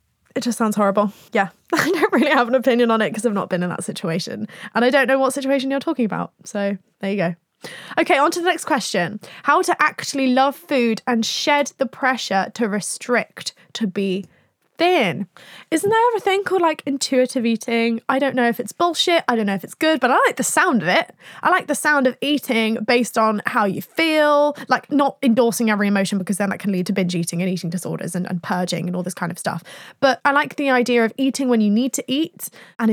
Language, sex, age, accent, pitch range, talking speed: English, female, 10-29, British, 200-265 Hz, 235 wpm